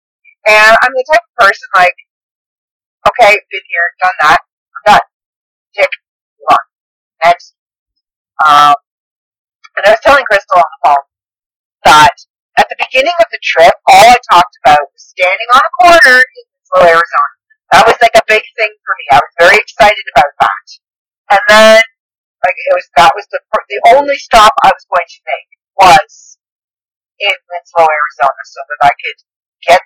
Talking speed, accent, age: 175 wpm, American, 40-59